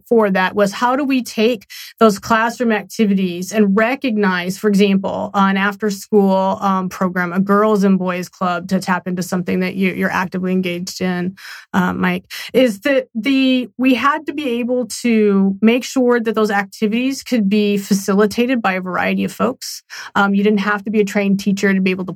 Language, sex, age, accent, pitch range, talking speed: English, female, 30-49, American, 185-215 Hz, 190 wpm